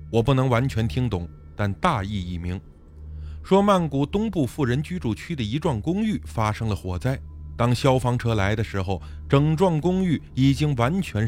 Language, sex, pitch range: Chinese, male, 90-140 Hz